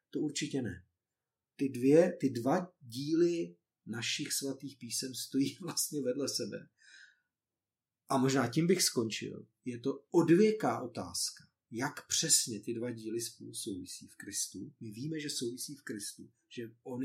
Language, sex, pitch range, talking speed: Czech, male, 120-150 Hz, 140 wpm